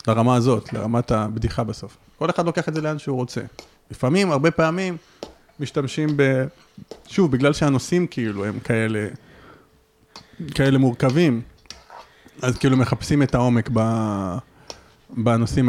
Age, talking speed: 30-49, 120 wpm